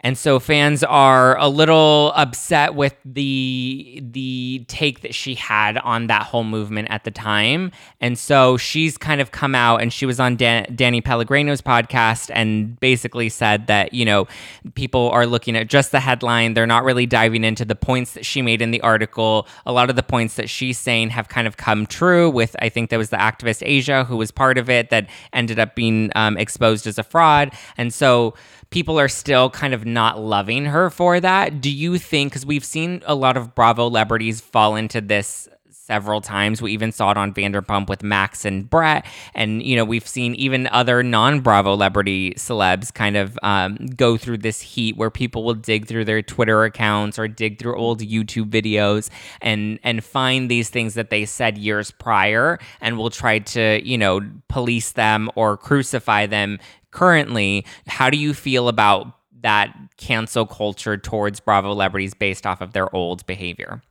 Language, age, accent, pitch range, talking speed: English, 20-39, American, 110-130 Hz, 190 wpm